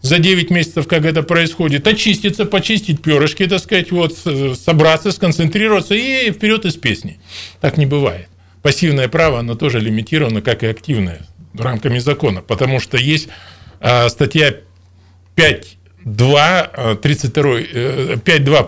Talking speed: 115 wpm